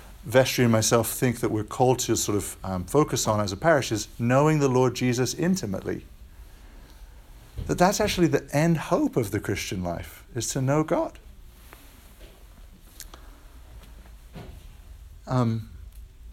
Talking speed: 135 wpm